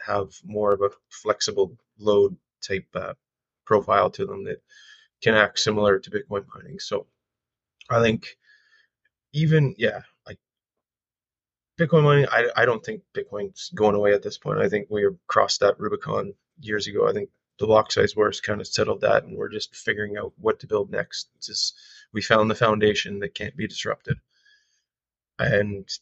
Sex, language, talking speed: male, English, 170 wpm